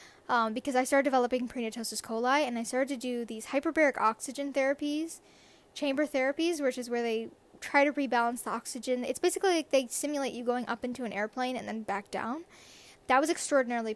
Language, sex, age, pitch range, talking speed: English, female, 10-29, 225-270 Hz, 195 wpm